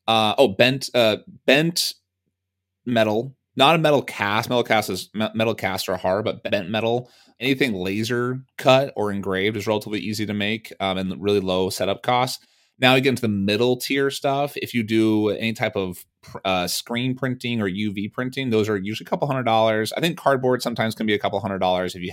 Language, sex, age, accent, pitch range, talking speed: English, male, 30-49, American, 100-125 Hz, 205 wpm